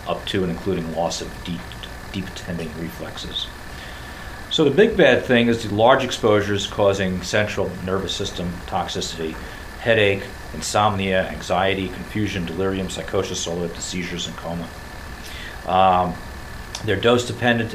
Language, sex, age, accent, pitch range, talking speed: English, male, 40-59, American, 85-105 Hz, 130 wpm